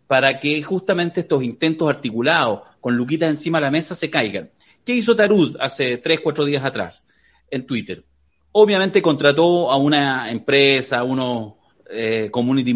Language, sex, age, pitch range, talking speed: Spanish, male, 40-59, 125-175 Hz, 150 wpm